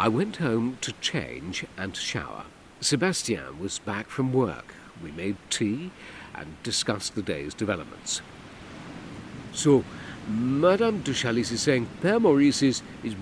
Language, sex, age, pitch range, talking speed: English, male, 50-69, 100-130 Hz, 135 wpm